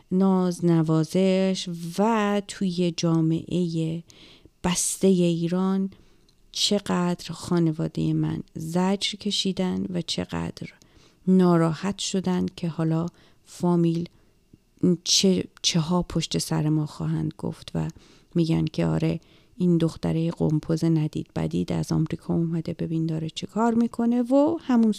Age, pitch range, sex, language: 40-59, 160-205 Hz, female, Persian